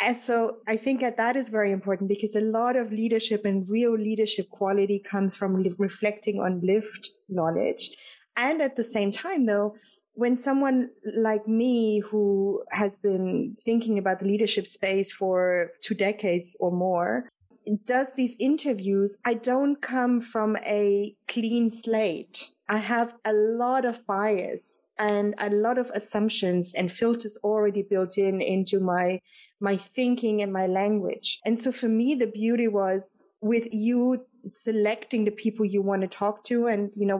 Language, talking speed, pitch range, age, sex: English, 160 wpm, 200-235 Hz, 30-49, female